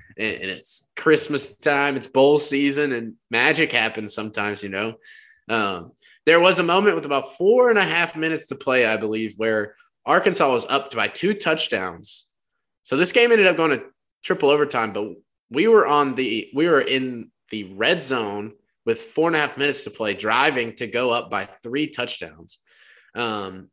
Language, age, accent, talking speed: English, 20-39, American, 180 wpm